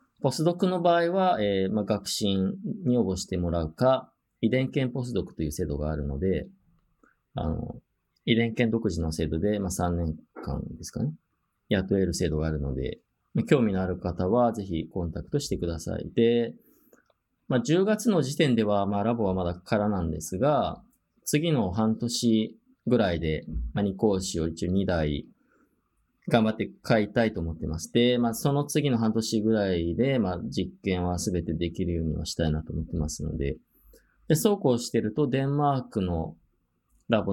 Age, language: 20-39, Japanese